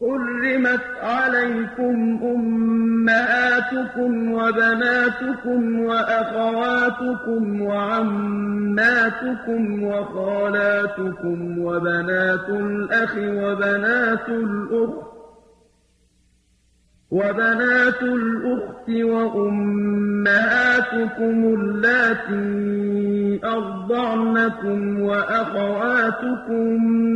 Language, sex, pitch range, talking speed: English, male, 205-245 Hz, 40 wpm